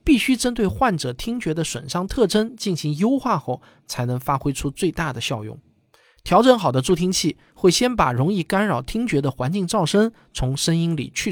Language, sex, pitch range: Chinese, male, 125-190 Hz